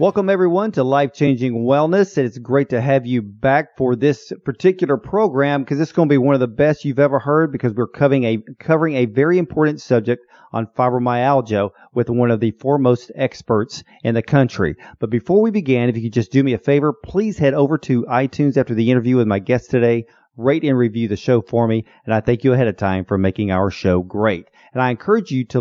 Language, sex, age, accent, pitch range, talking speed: English, male, 40-59, American, 120-155 Hz, 225 wpm